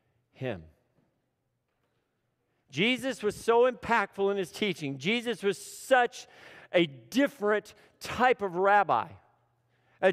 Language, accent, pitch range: English, American, 155-250 Hz